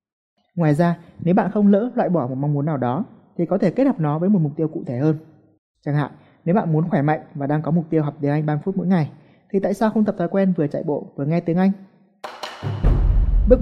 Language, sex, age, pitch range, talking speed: Vietnamese, male, 20-39, 140-185 Hz, 265 wpm